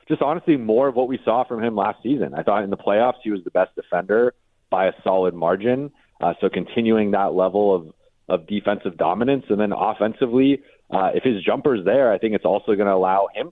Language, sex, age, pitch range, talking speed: English, male, 30-49, 95-125 Hz, 220 wpm